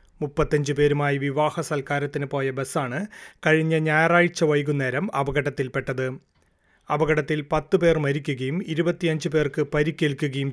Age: 30-49